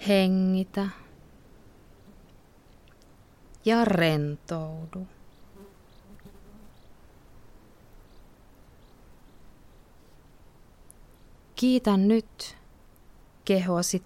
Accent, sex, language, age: native, female, Finnish, 20-39